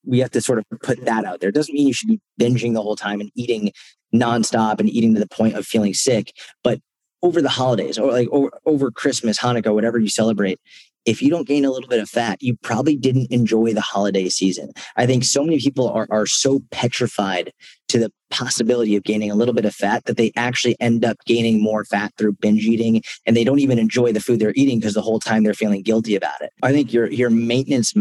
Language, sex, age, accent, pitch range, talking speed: English, male, 30-49, American, 105-125 Hz, 240 wpm